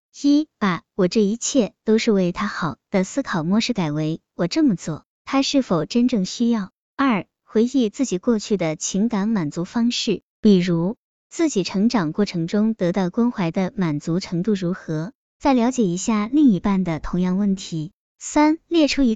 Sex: male